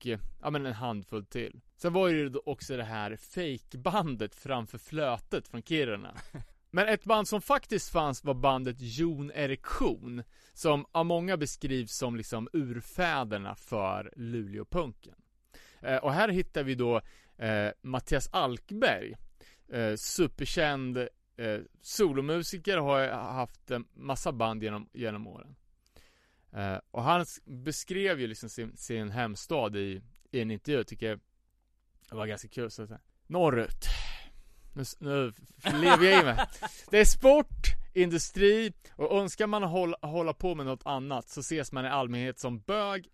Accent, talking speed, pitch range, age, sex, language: Norwegian, 140 wpm, 115-165 Hz, 30-49, male, Swedish